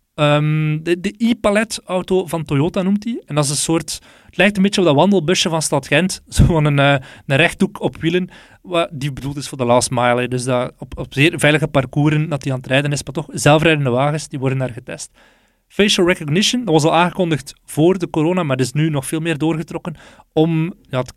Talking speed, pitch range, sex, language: 225 wpm, 135-170 Hz, male, Dutch